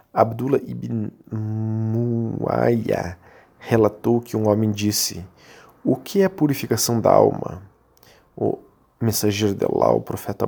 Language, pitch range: Portuguese, 105-125 Hz